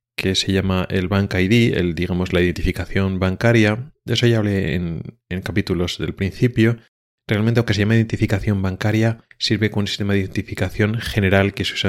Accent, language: Spanish, Spanish